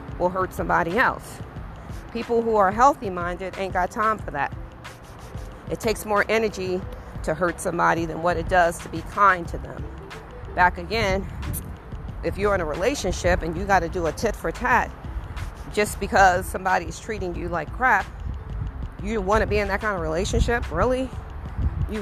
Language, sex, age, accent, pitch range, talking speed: English, female, 40-59, American, 185-230 Hz, 175 wpm